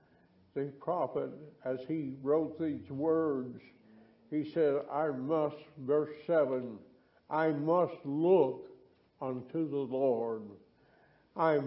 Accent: American